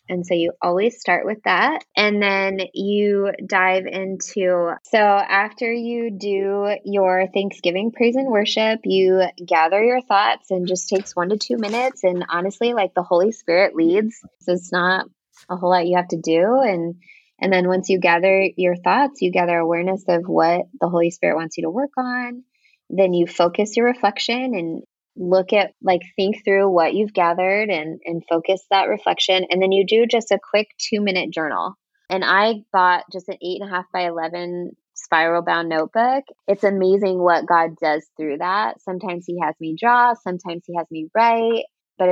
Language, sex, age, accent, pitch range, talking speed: English, female, 20-39, American, 170-205 Hz, 185 wpm